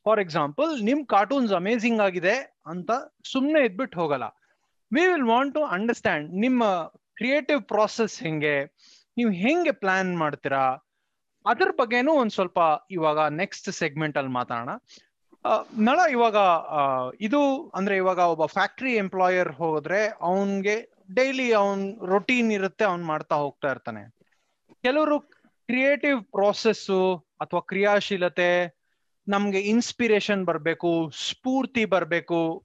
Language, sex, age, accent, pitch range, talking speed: Kannada, male, 20-39, native, 170-240 Hz, 105 wpm